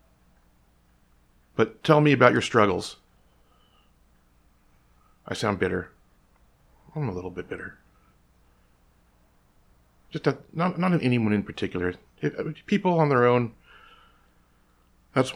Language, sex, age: English, male, 40-59